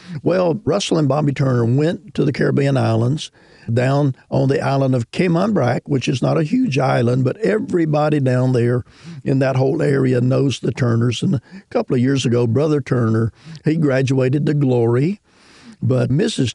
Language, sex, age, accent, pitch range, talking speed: English, male, 50-69, American, 125-150 Hz, 175 wpm